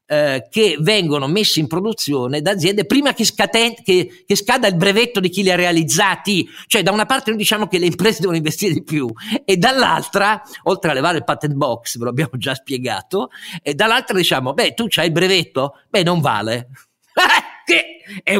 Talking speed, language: 185 wpm, Italian